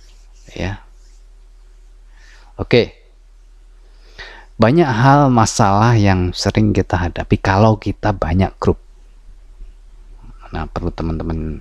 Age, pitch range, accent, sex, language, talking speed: 20-39, 90-115 Hz, native, male, Indonesian, 90 wpm